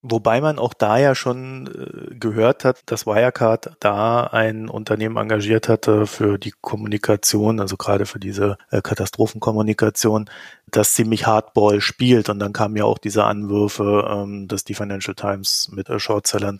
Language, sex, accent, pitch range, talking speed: German, male, German, 105-125 Hz, 145 wpm